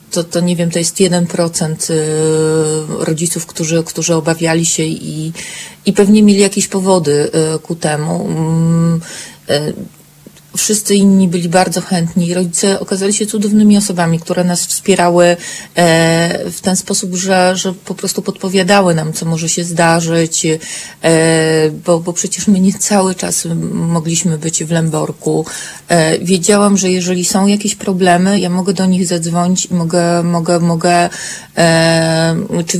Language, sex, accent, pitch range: Polish, female, native, 165-190 Hz